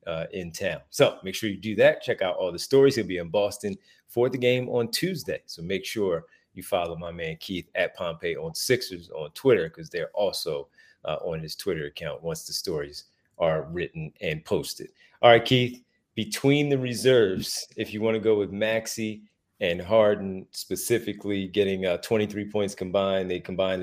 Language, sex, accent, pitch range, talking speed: English, male, American, 95-120 Hz, 190 wpm